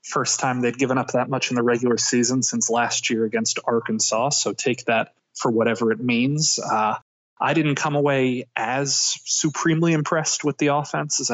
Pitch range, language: 115-135 Hz, English